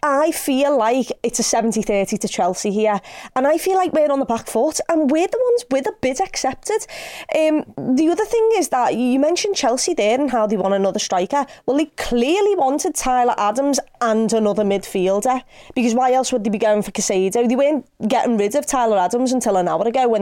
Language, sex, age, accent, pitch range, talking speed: English, female, 20-39, British, 215-275 Hz, 210 wpm